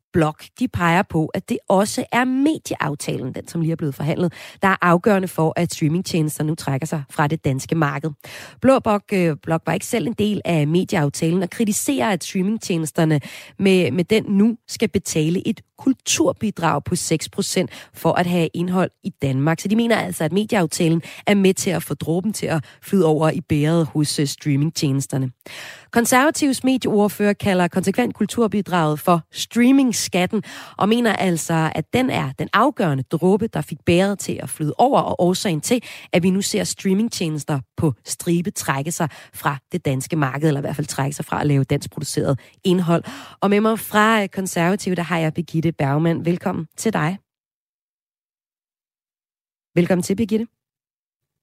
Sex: female